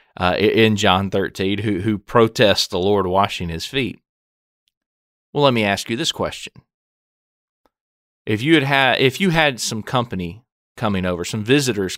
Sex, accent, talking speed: male, American, 160 wpm